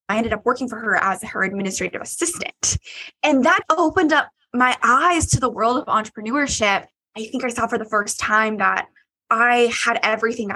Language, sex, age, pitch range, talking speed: English, female, 20-39, 200-255 Hz, 190 wpm